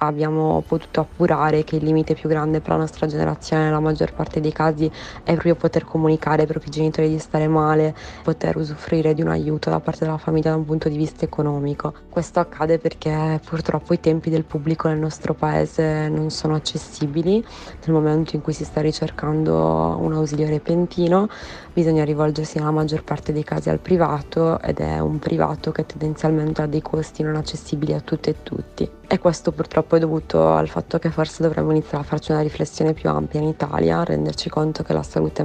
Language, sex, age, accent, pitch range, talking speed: Italian, female, 20-39, native, 150-160 Hz, 195 wpm